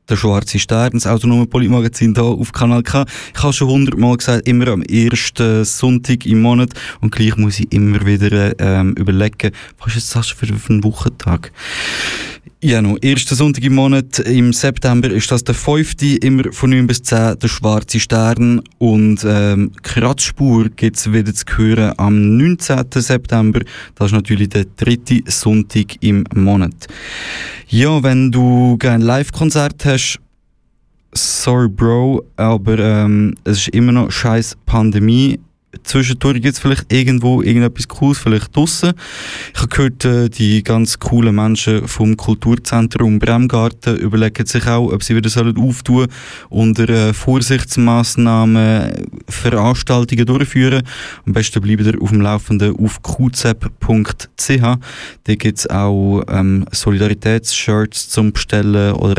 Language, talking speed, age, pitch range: German, 140 wpm, 20-39, 105-125 Hz